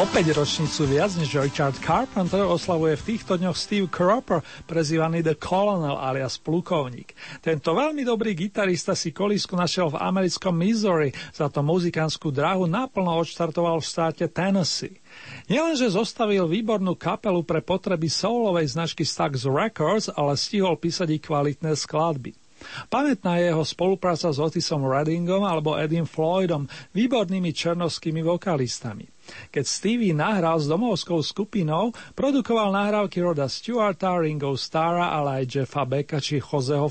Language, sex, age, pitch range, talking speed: Slovak, male, 40-59, 155-195 Hz, 135 wpm